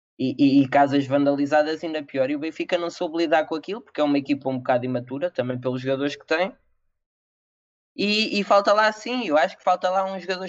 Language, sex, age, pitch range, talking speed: Portuguese, male, 20-39, 135-190 Hz, 225 wpm